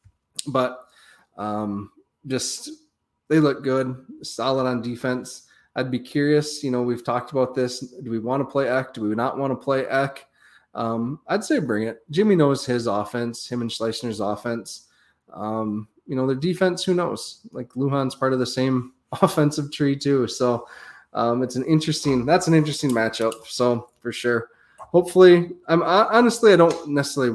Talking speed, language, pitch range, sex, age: 175 wpm, English, 120-155 Hz, male, 20-39